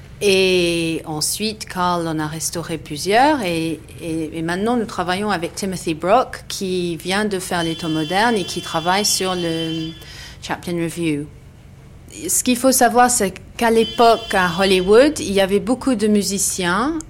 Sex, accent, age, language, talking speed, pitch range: female, French, 40-59, French, 160 wpm, 165-200 Hz